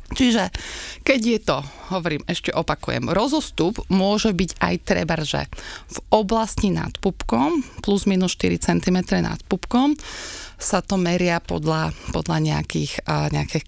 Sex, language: female, Slovak